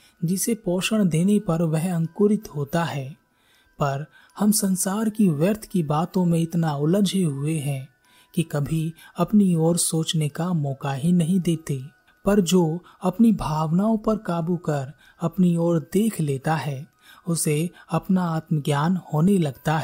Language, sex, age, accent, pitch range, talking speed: Hindi, male, 30-49, native, 150-190 Hz, 140 wpm